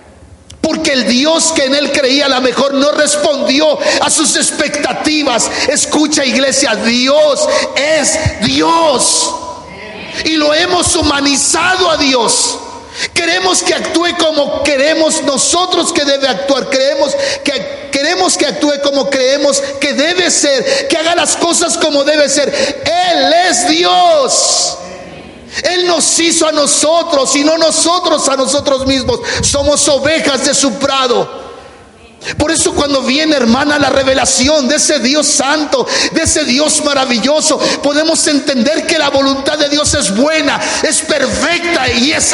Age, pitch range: 50-69, 275-320 Hz